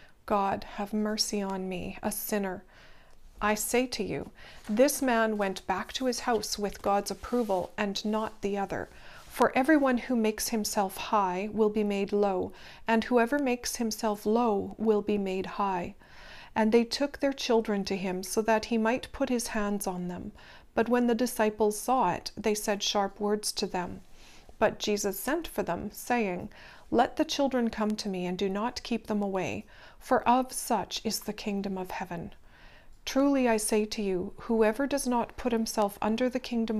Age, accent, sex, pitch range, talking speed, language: 40-59, American, female, 195-235 Hz, 180 wpm, English